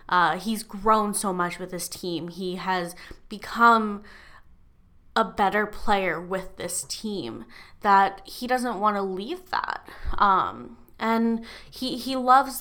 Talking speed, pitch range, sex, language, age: 140 wpm, 185-225 Hz, female, English, 10-29